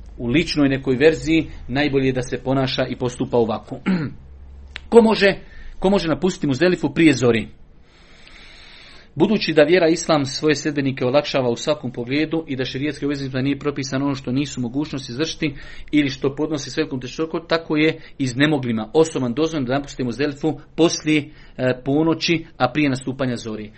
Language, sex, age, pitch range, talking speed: Croatian, male, 40-59, 125-150 Hz, 155 wpm